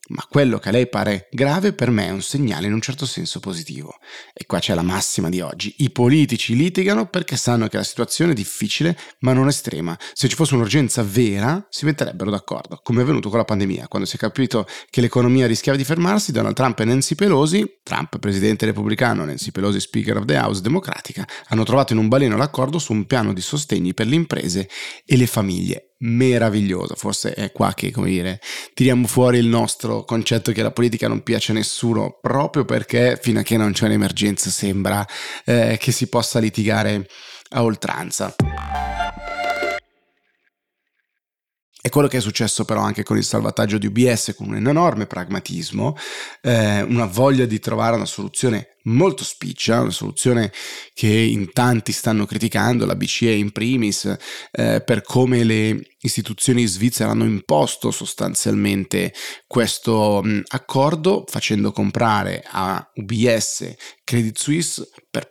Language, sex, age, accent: Italian, male, 30-49, native